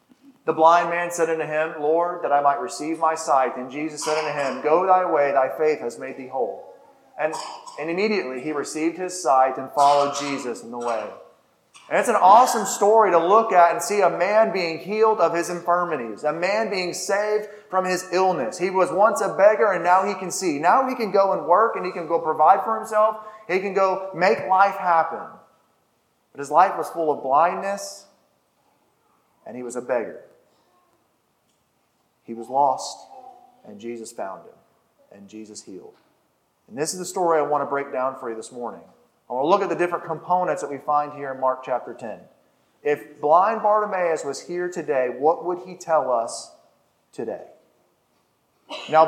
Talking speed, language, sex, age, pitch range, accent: 195 wpm, English, male, 30-49, 145-185 Hz, American